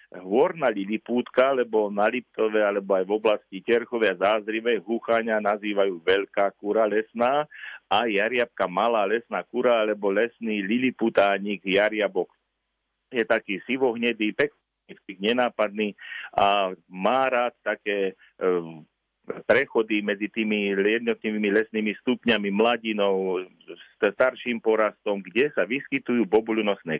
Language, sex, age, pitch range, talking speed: Slovak, male, 50-69, 100-120 Hz, 110 wpm